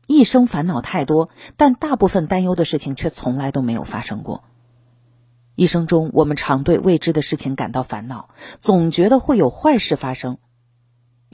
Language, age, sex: Chinese, 30-49, female